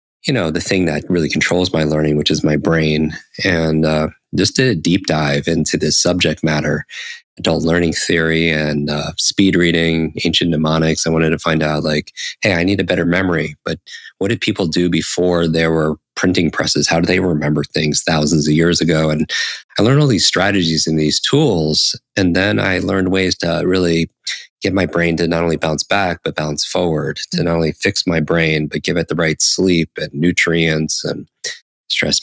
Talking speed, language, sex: 200 wpm, English, male